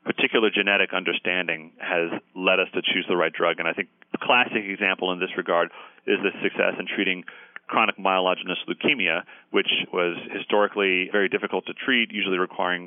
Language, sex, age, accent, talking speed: English, male, 40-59, American, 175 wpm